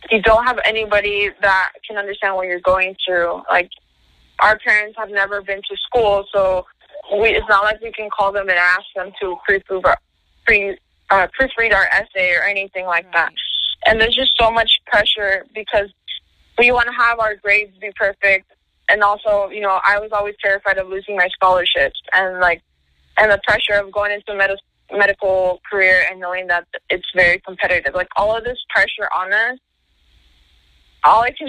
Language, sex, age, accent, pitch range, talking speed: English, female, 20-39, American, 185-210 Hz, 175 wpm